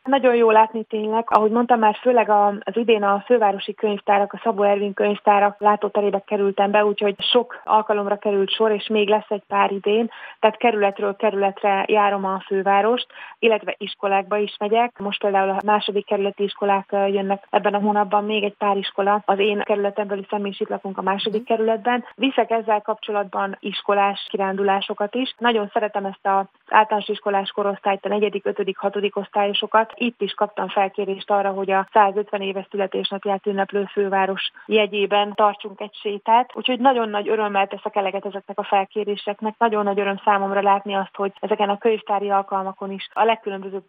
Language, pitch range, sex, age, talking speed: Hungarian, 195-215 Hz, female, 30-49, 165 wpm